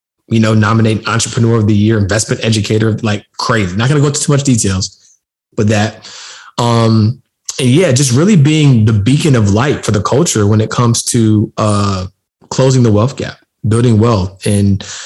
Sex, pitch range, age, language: male, 100-115 Hz, 20-39, English